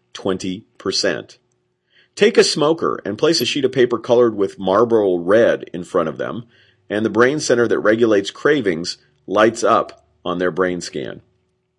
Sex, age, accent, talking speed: male, 40-59, American, 155 wpm